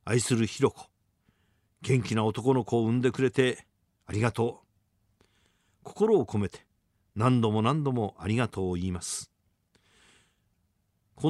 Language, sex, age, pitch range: Japanese, male, 50-69, 100-135 Hz